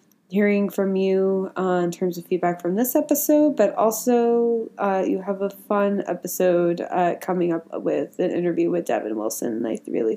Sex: female